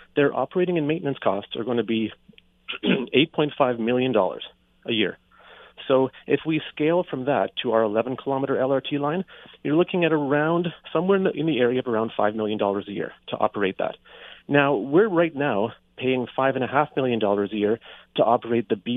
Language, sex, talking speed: English, male, 195 wpm